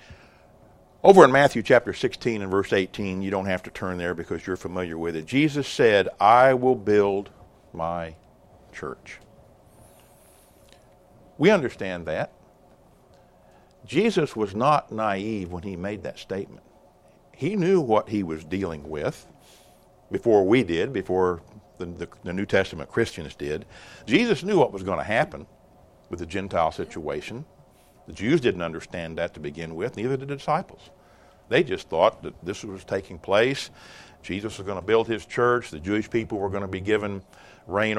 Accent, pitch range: American, 90-115 Hz